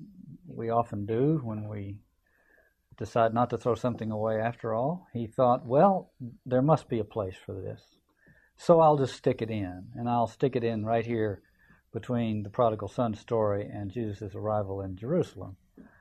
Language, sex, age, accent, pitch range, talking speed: English, male, 50-69, American, 105-135 Hz, 170 wpm